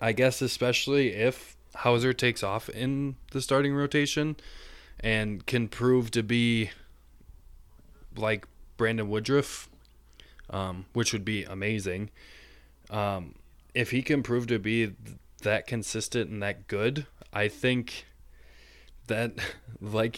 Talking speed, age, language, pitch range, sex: 120 wpm, 20-39, English, 95-115 Hz, male